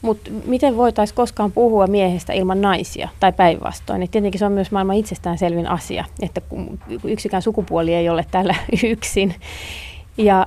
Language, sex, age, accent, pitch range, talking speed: Finnish, female, 30-49, native, 170-205 Hz, 145 wpm